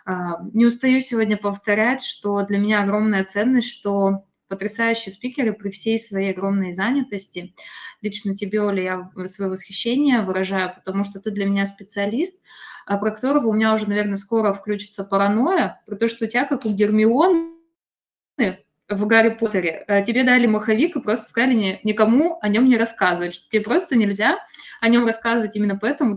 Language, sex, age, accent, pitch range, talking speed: Russian, female, 20-39, native, 195-230 Hz, 160 wpm